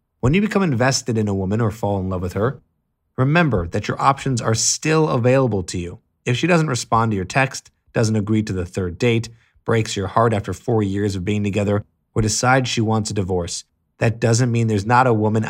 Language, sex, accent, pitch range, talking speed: English, male, American, 95-125 Hz, 220 wpm